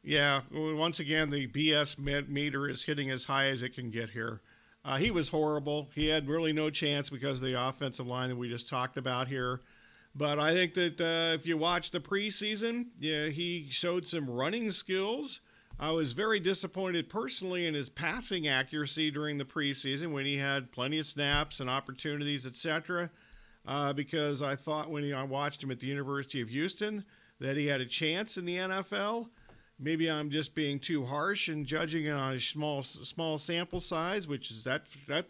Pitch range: 140-175 Hz